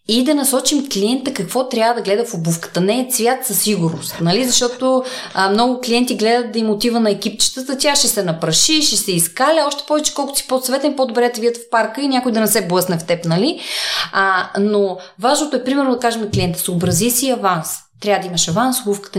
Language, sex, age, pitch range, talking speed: Bulgarian, female, 20-39, 195-245 Hz, 215 wpm